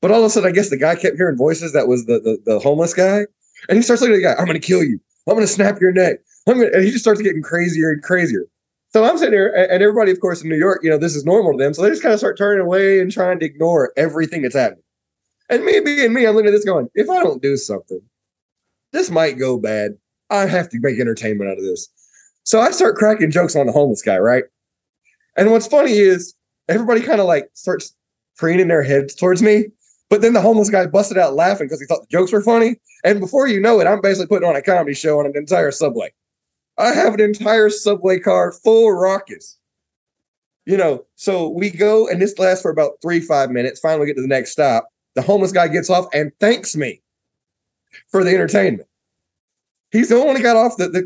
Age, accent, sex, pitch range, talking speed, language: 20-39, American, male, 165-215 Hz, 250 wpm, English